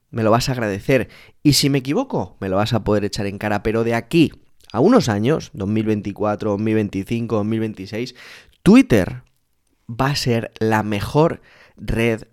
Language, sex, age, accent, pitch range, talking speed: Spanish, male, 20-39, Spanish, 105-130 Hz, 160 wpm